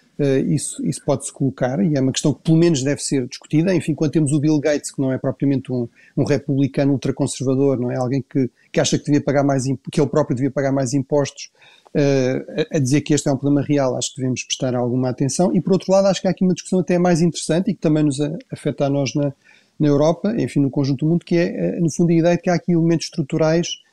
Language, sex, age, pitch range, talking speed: Portuguese, male, 30-49, 140-160 Hz, 260 wpm